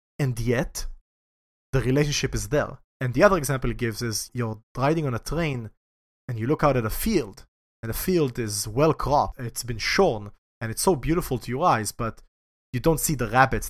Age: 30-49